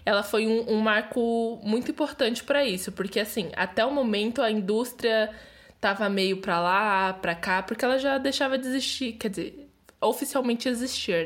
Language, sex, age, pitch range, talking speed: Portuguese, female, 10-29, 195-245 Hz, 170 wpm